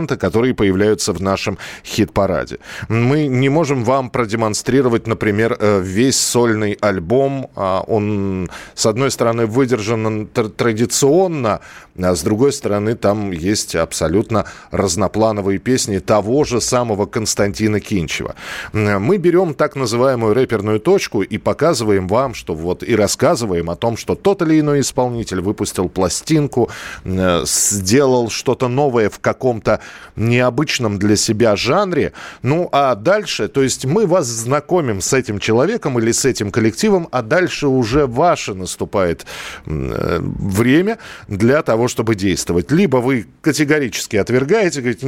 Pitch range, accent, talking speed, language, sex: 105-140 Hz, native, 125 wpm, Russian, male